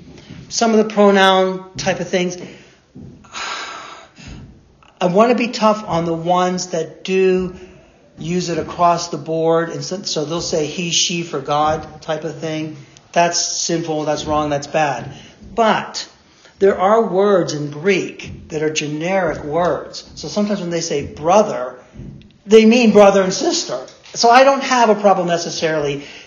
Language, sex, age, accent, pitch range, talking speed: English, male, 40-59, American, 150-180 Hz, 155 wpm